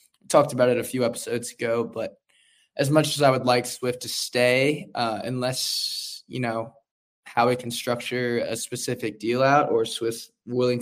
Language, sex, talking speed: English, male, 175 wpm